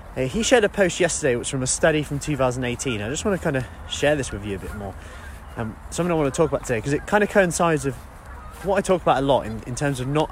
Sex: male